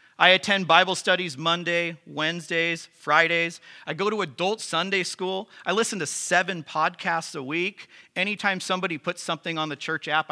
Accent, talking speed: American, 165 wpm